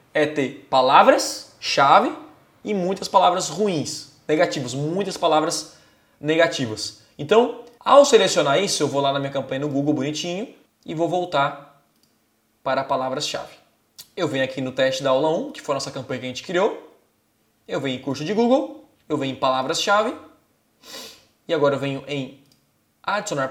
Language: Portuguese